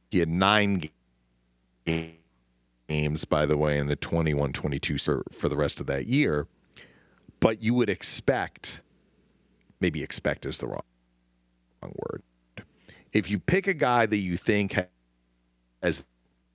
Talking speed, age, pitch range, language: 125 wpm, 40-59, 75-105 Hz, English